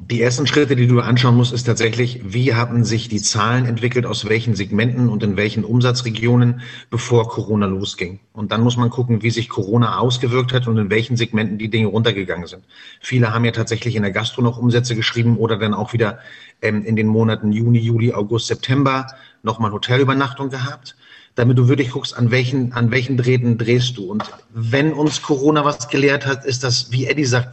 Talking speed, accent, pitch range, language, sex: 195 wpm, German, 115-130 Hz, German, male